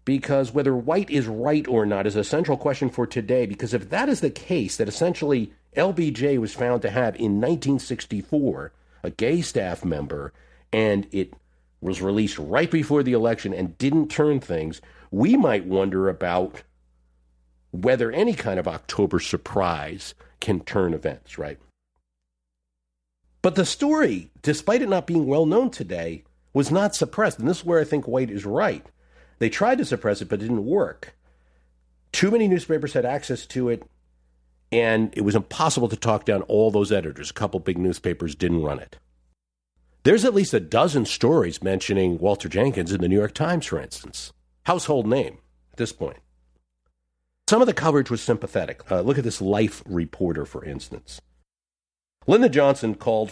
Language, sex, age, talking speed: English, male, 50-69, 170 wpm